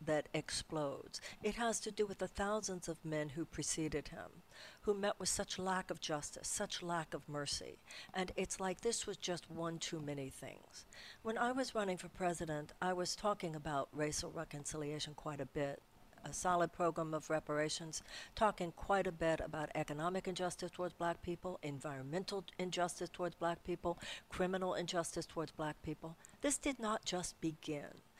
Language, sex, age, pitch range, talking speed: English, female, 60-79, 155-190 Hz, 170 wpm